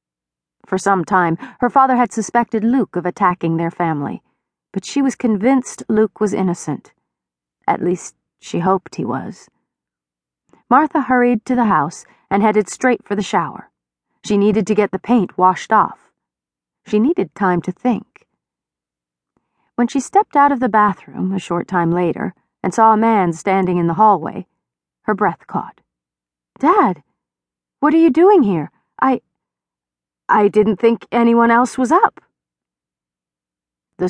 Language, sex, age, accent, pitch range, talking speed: English, female, 40-59, American, 165-225 Hz, 150 wpm